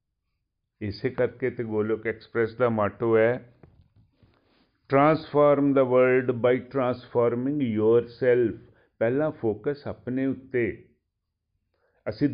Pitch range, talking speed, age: 105-135 Hz, 90 wpm, 50-69